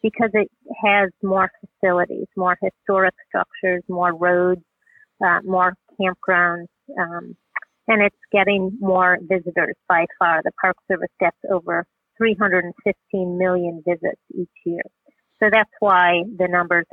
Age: 40-59